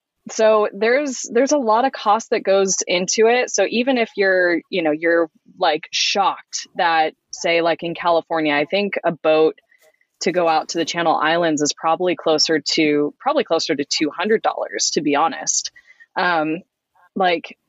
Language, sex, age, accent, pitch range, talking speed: English, female, 20-39, American, 160-215 Hz, 165 wpm